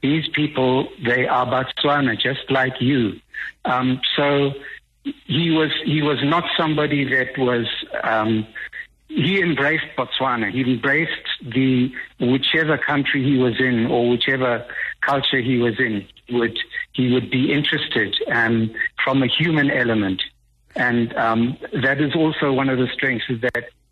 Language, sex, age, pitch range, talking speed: English, male, 60-79, 115-140 Hz, 145 wpm